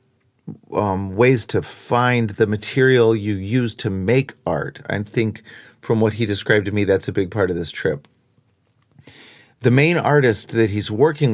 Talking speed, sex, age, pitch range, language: 170 wpm, male, 40-59, 105-135 Hz, English